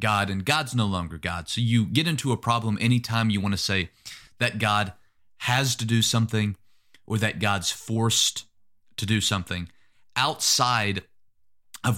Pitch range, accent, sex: 95-115 Hz, American, male